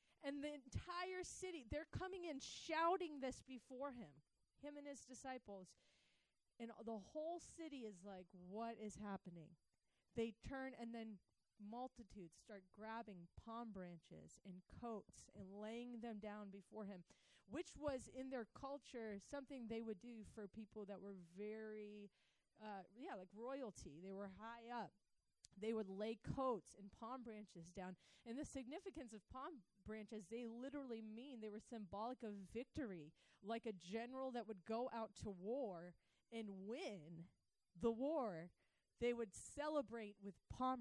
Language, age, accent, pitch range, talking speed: English, 30-49, American, 200-255 Hz, 155 wpm